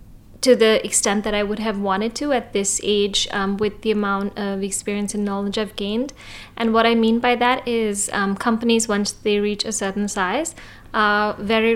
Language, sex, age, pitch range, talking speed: English, female, 20-39, 205-225 Hz, 200 wpm